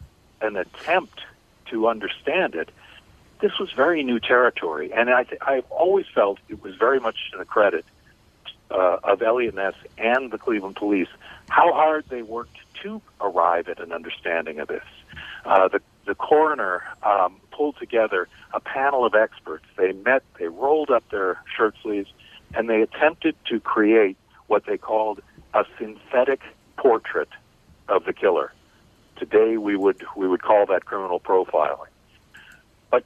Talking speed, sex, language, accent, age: 150 wpm, male, English, American, 60-79